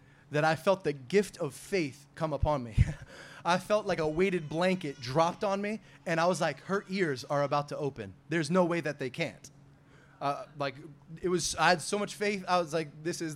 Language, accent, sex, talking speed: English, American, male, 220 wpm